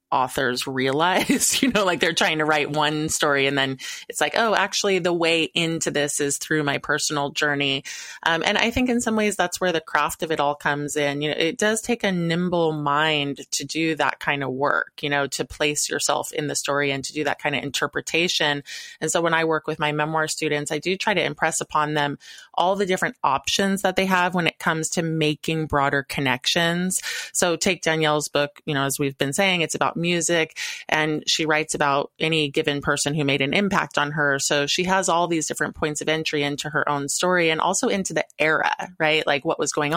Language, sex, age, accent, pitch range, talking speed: English, female, 20-39, American, 145-180 Hz, 225 wpm